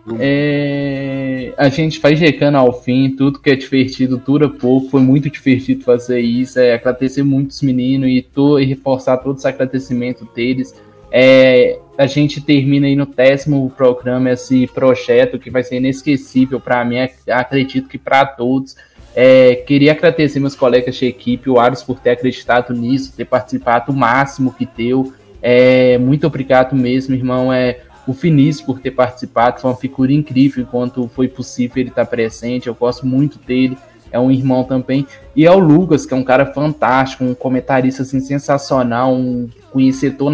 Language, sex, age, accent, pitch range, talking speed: Portuguese, male, 10-29, Brazilian, 125-140 Hz, 165 wpm